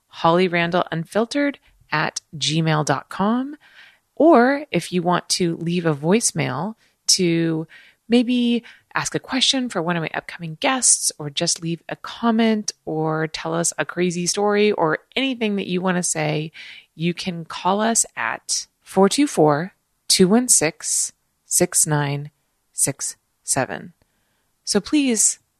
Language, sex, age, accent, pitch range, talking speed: English, female, 30-49, American, 160-215 Hz, 120 wpm